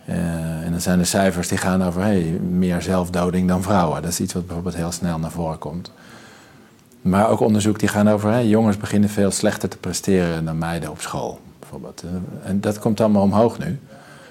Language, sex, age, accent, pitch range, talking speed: Dutch, male, 50-69, Dutch, 95-120 Hz, 200 wpm